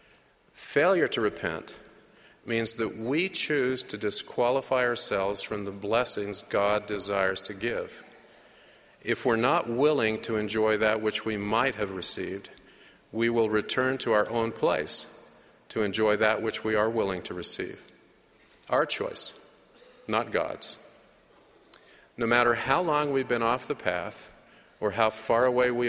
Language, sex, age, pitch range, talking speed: English, male, 50-69, 105-130 Hz, 145 wpm